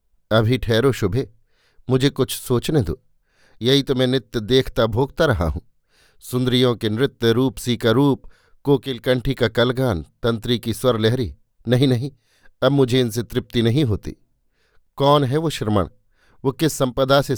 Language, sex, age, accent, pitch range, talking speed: Hindi, male, 50-69, native, 115-135 Hz, 150 wpm